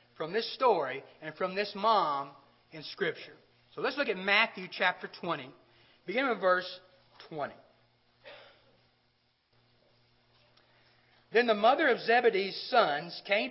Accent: American